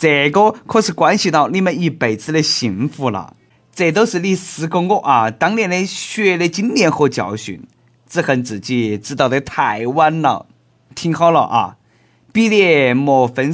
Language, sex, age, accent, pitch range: Chinese, male, 20-39, native, 125-195 Hz